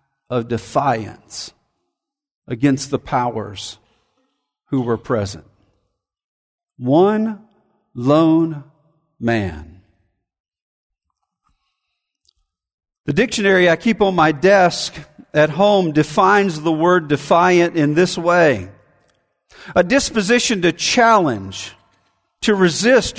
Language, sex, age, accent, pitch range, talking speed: English, male, 50-69, American, 150-225 Hz, 85 wpm